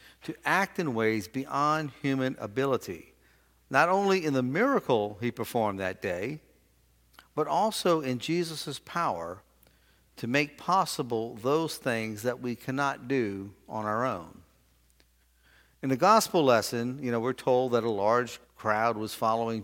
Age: 50-69